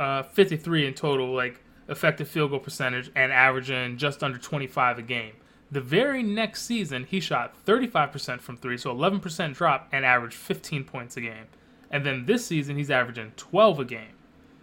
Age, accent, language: 20-39, American, English